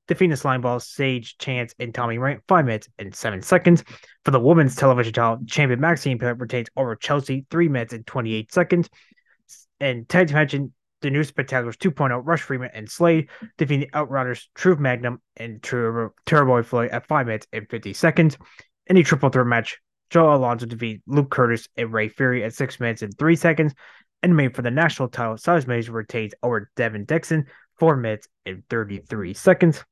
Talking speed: 185 wpm